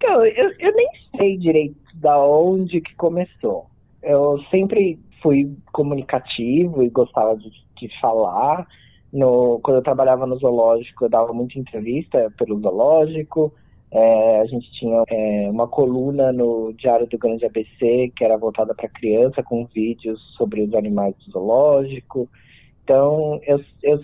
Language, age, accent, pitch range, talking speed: English, 20-39, Brazilian, 115-150 Hz, 135 wpm